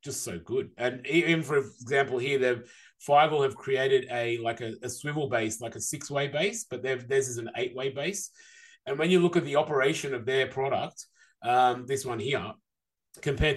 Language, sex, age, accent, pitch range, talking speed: English, male, 30-49, Australian, 125-160 Hz, 200 wpm